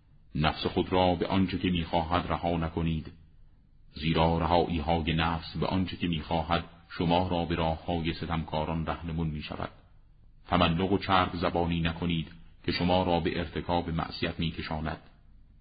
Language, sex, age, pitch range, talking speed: Persian, male, 40-59, 80-90 Hz, 145 wpm